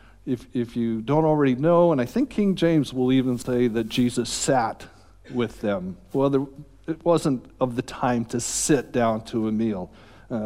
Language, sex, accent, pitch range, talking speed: English, male, American, 115-135 Hz, 190 wpm